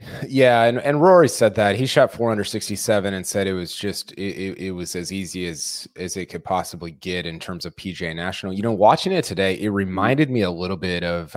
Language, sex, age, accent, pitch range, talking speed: English, male, 20-39, American, 95-120 Hz, 235 wpm